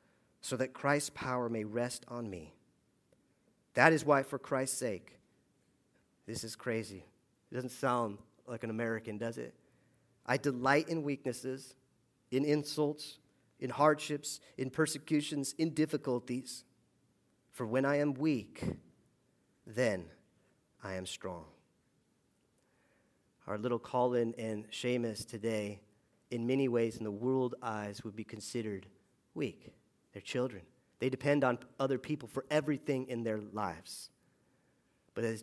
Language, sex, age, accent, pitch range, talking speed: English, male, 40-59, American, 105-130 Hz, 130 wpm